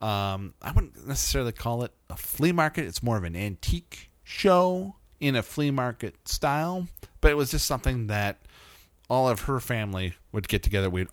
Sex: male